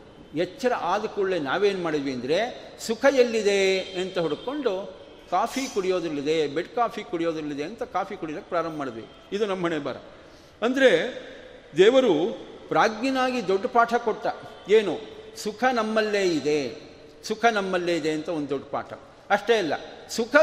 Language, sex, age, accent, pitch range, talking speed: Kannada, male, 40-59, native, 185-255 Hz, 125 wpm